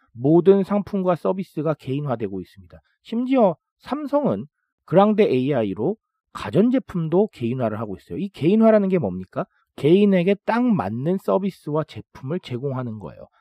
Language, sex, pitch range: Korean, male, 130-210 Hz